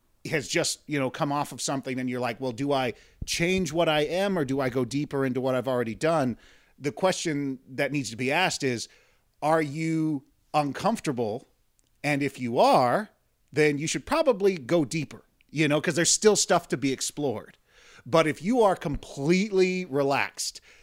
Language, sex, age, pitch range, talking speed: English, male, 30-49, 135-170 Hz, 185 wpm